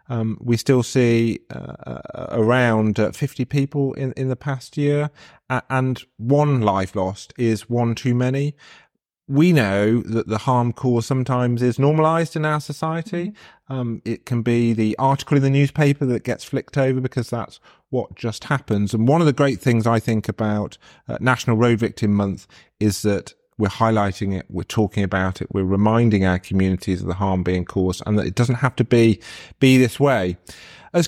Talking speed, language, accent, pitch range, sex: 185 wpm, English, British, 105-130 Hz, male